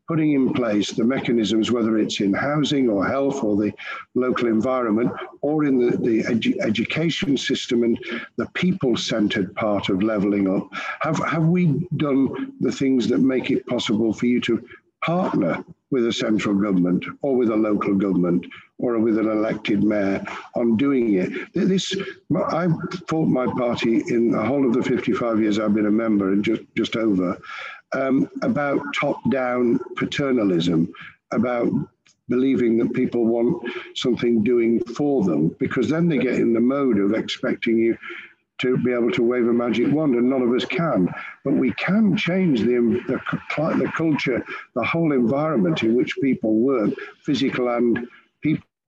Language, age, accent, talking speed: English, 60-79, British, 165 wpm